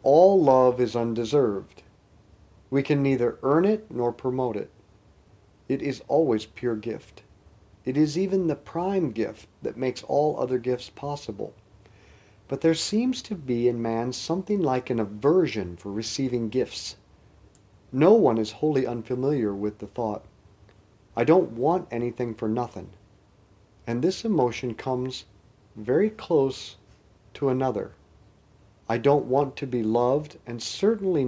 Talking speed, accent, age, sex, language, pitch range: 140 wpm, American, 40-59, male, English, 105-140 Hz